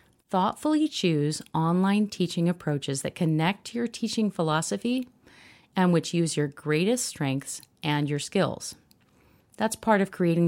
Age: 40-59